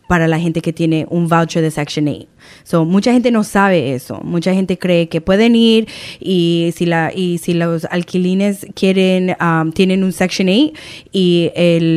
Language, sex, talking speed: Spanish, female, 185 wpm